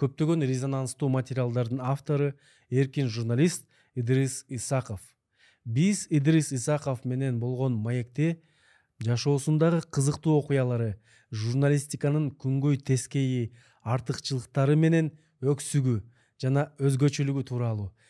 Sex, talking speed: male, 75 wpm